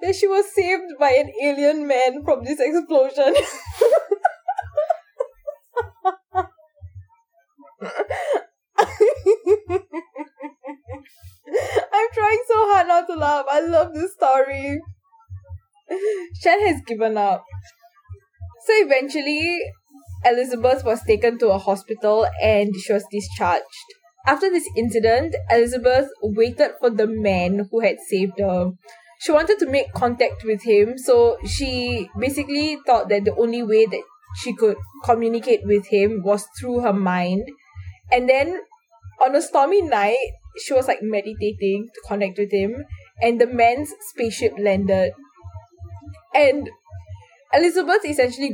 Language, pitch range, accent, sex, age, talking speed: English, 205-325 Hz, Indian, female, 10-29, 120 wpm